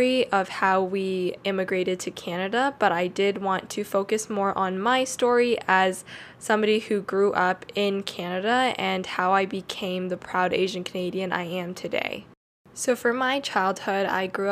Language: English